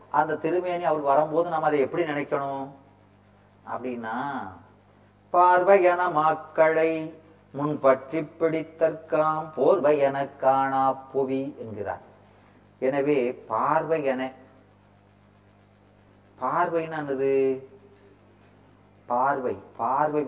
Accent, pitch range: native, 105-155 Hz